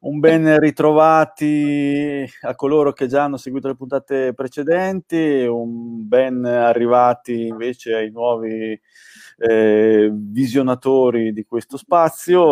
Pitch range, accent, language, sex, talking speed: 110-130 Hz, native, Italian, male, 110 wpm